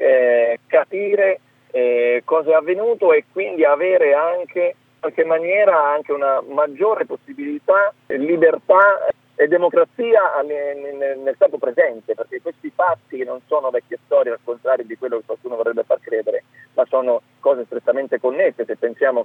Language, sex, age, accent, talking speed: Italian, male, 40-59, native, 145 wpm